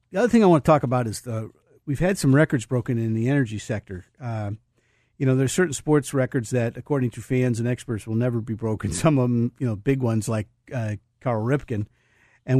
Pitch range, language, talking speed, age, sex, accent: 115-140 Hz, English, 235 wpm, 50-69, male, American